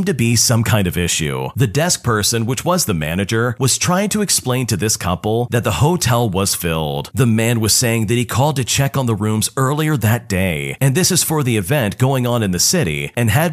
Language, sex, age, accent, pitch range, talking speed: English, male, 40-59, American, 105-135 Hz, 235 wpm